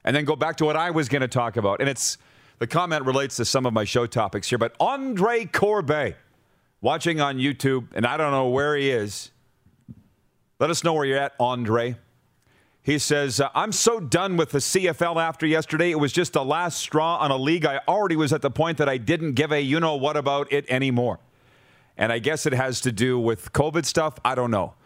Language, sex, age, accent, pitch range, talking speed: English, male, 40-59, American, 125-165 Hz, 215 wpm